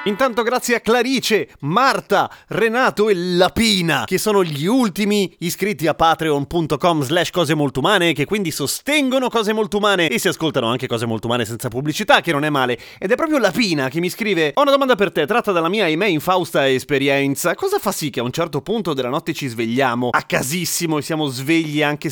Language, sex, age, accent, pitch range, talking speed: Italian, male, 30-49, native, 135-190 Hz, 205 wpm